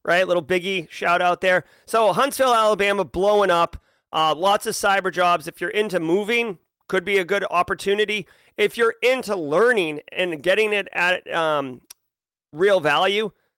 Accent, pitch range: American, 165-205 Hz